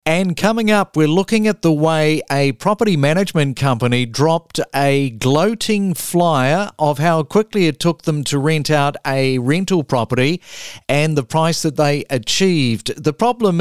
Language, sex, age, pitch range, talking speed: English, male, 50-69, 135-170 Hz, 160 wpm